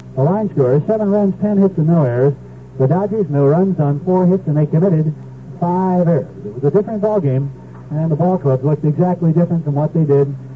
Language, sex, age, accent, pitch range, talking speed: English, male, 60-79, American, 135-180 Hz, 220 wpm